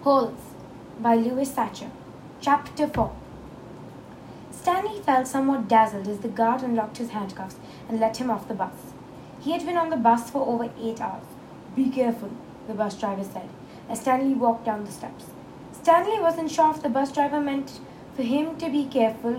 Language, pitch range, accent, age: English, 225-275 Hz, Indian, 20-39